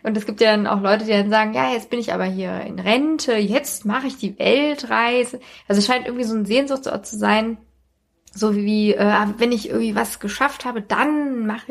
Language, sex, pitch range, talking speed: German, female, 195-225 Hz, 215 wpm